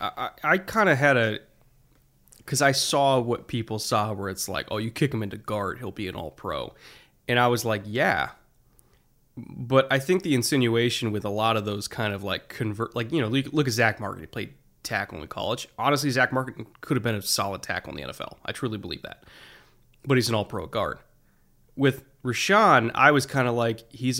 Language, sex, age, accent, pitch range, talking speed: English, male, 20-39, American, 110-130 Hz, 210 wpm